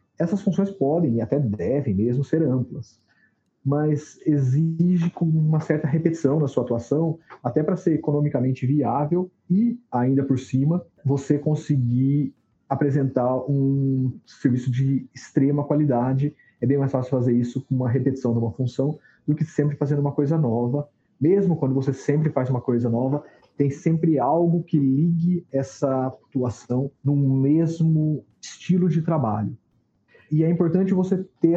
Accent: Brazilian